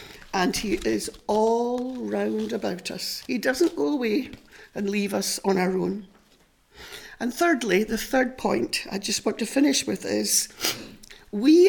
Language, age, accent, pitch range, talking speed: English, 60-79, British, 210-270 Hz, 155 wpm